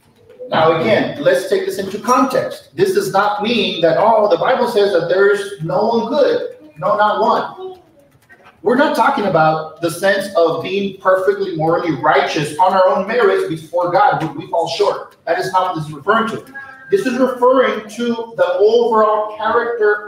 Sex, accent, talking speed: male, American, 175 wpm